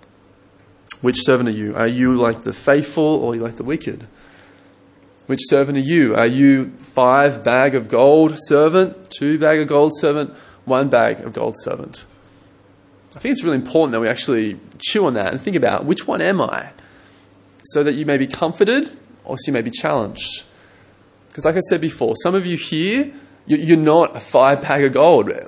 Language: English